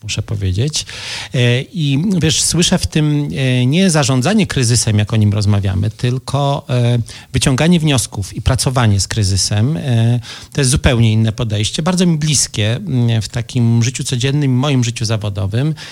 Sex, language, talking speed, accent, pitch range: male, Polish, 135 wpm, native, 115-140 Hz